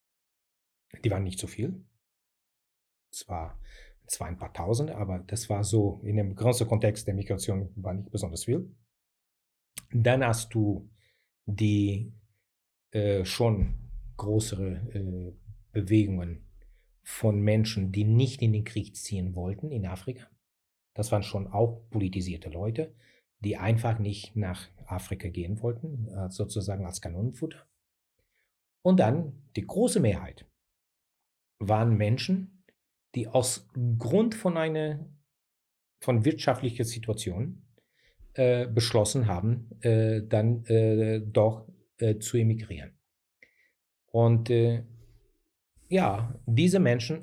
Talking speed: 115 wpm